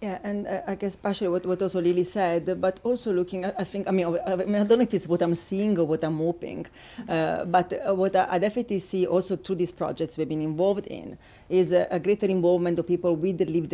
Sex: female